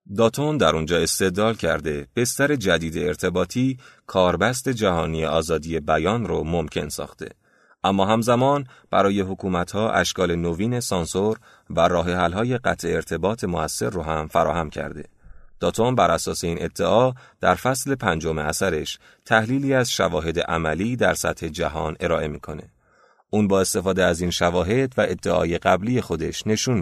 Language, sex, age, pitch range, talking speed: Persian, male, 30-49, 85-115 Hz, 135 wpm